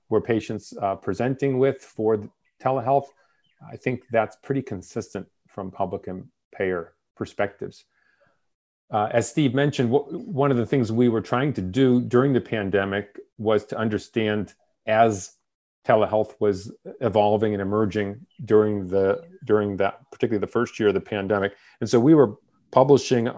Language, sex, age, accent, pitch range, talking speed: English, male, 40-59, American, 100-125 Hz, 155 wpm